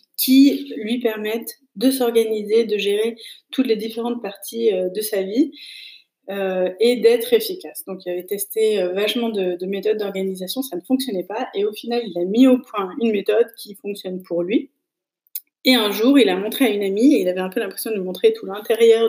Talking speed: 200 wpm